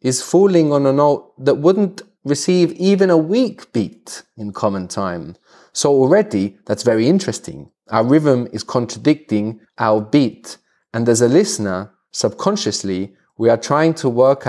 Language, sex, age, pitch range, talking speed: English, male, 30-49, 105-160 Hz, 150 wpm